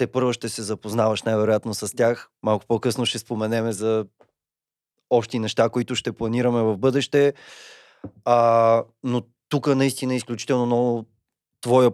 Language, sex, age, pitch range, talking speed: Bulgarian, male, 30-49, 115-130 Hz, 130 wpm